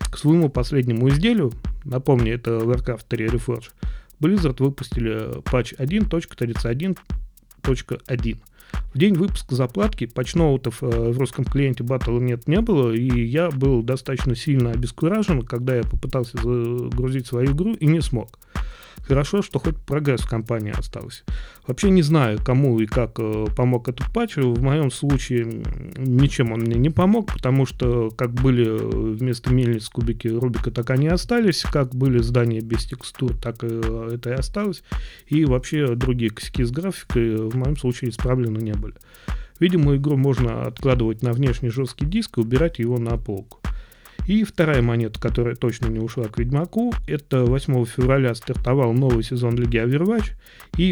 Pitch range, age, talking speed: 120-145 Hz, 30-49, 150 wpm